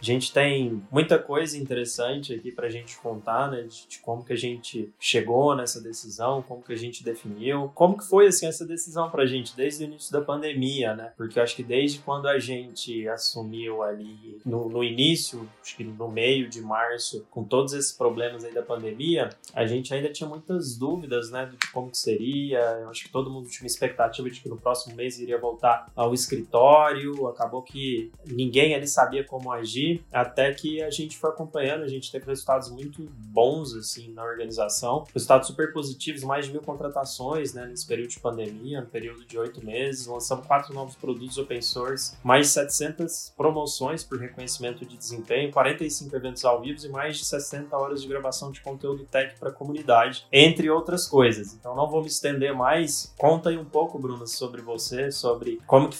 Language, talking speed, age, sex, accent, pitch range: Portuguese, 200 wpm, 20-39, male, Brazilian, 120-145 Hz